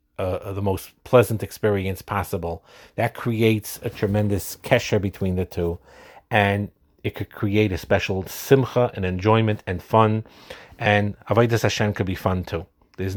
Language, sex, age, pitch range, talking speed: English, male, 40-59, 95-120 Hz, 150 wpm